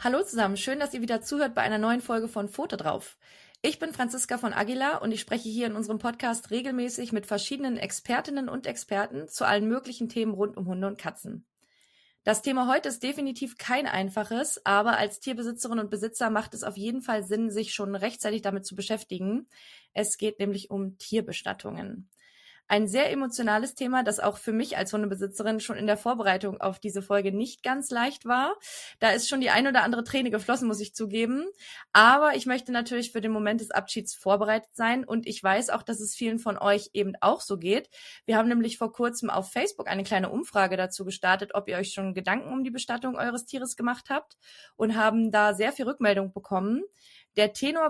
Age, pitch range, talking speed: 20-39, 200-245 Hz, 200 wpm